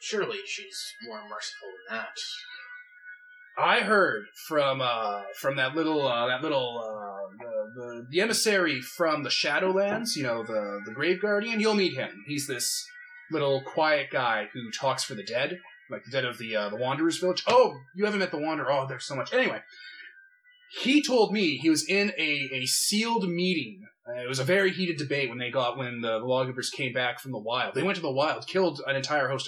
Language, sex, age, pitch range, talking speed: English, male, 20-39, 135-215 Hz, 205 wpm